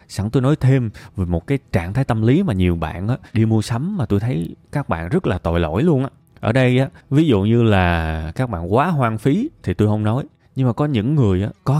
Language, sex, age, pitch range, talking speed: Vietnamese, male, 20-39, 100-150 Hz, 265 wpm